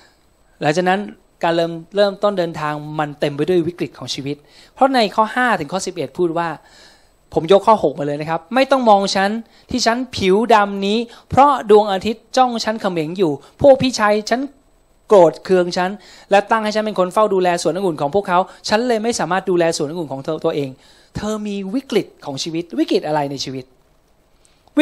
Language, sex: Thai, male